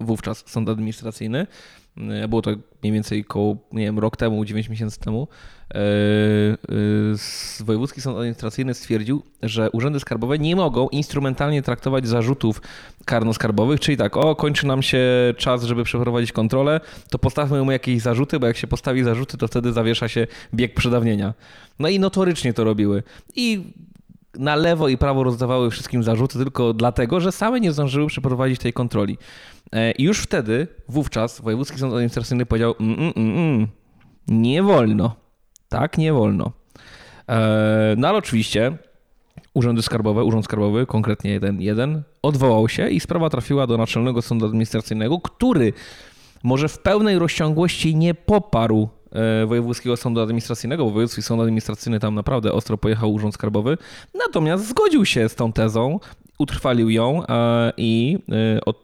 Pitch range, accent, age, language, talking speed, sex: 110-135 Hz, native, 20-39, Polish, 145 wpm, male